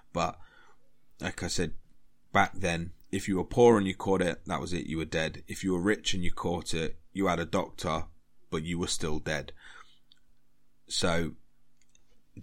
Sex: male